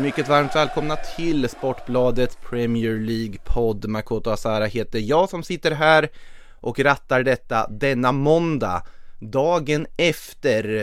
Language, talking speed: Swedish, 115 wpm